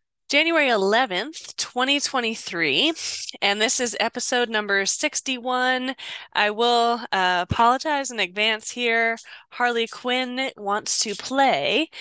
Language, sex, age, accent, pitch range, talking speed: English, female, 10-29, American, 210-275 Hz, 105 wpm